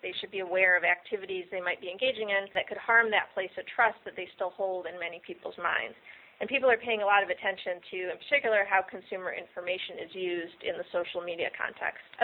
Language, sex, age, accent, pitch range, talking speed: English, female, 30-49, American, 185-225 Hz, 235 wpm